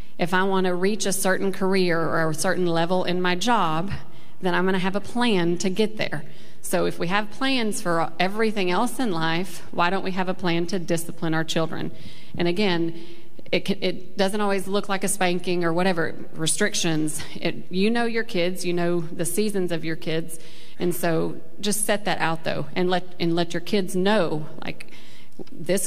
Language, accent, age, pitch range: English, American, 40-59, 170-195 Hz